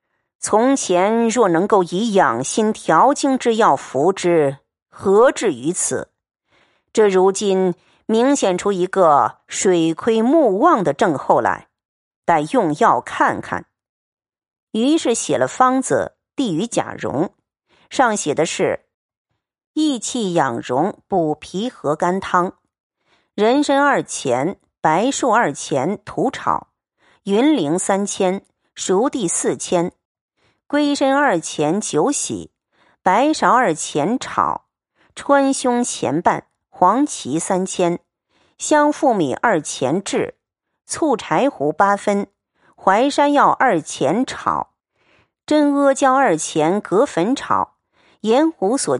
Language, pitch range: Chinese, 190-275 Hz